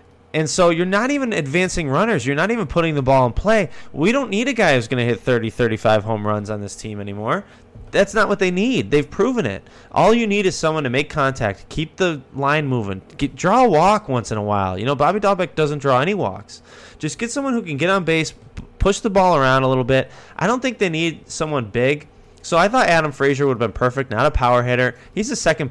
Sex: male